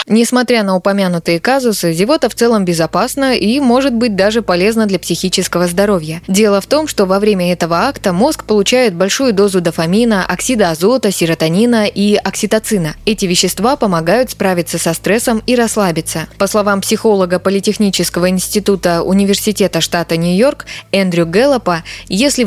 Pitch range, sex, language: 175-225 Hz, female, Russian